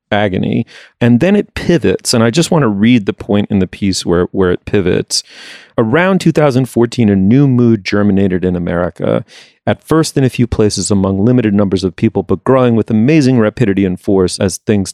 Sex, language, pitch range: male, English, 100-120 Hz